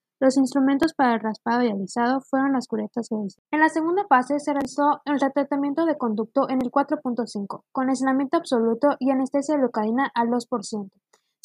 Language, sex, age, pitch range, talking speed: Spanish, female, 20-39, 225-275 Hz, 175 wpm